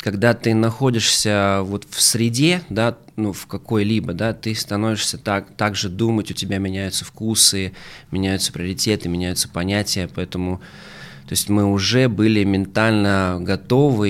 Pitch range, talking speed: 95-115 Hz, 140 wpm